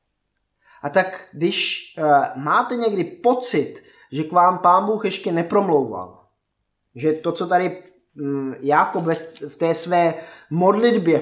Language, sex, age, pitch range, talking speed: Czech, male, 20-39, 140-185 Hz, 130 wpm